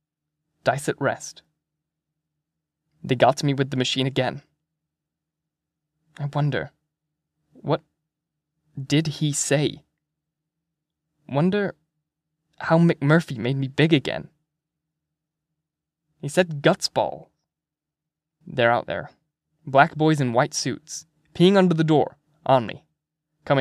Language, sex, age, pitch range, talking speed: English, male, 20-39, 145-155 Hz, 110 wpm